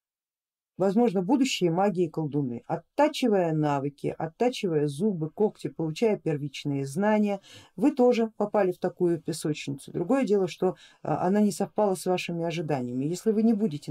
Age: 50-69